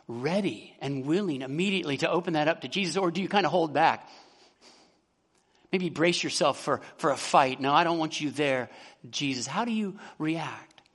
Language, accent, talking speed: English, American, 190 wpm